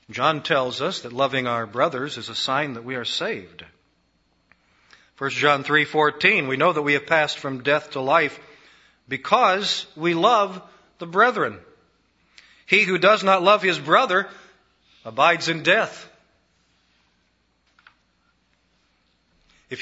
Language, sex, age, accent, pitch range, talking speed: English, male, 40-59, American, 140-195 Hz, 130 wpm